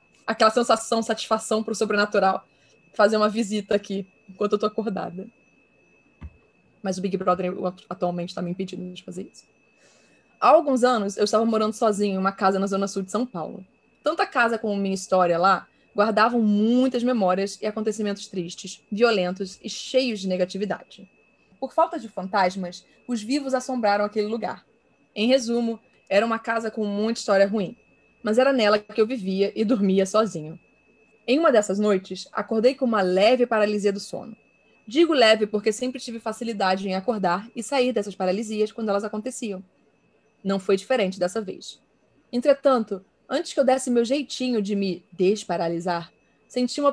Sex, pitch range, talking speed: female, 195-235 Hz, 165 wpm